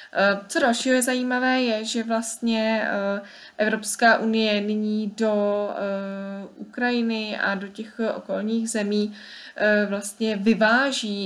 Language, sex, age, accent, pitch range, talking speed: Czech, female, 20-39, native, 205-225 Hz, 100 wpm